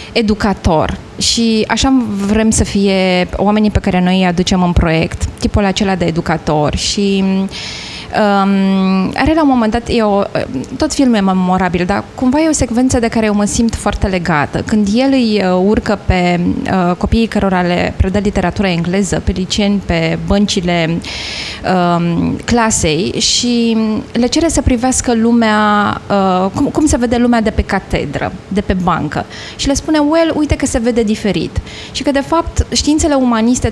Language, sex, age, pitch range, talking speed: Romanian, female, 20-39, 195-255 Hz, 165 wpm